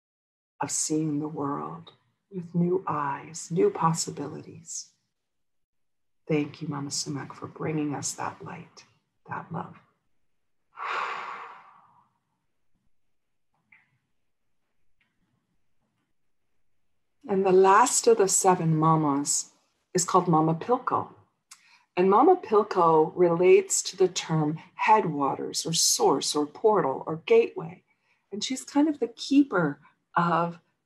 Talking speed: 100 wpm